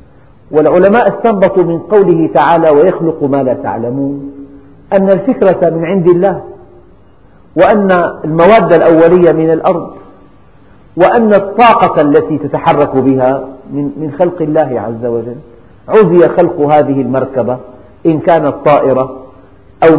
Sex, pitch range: male, 125-175 Hz